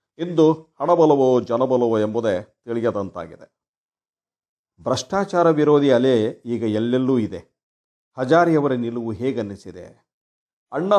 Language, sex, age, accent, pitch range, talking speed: Kannada, male, 50-69, native, 115-160 Hz, 80 wpm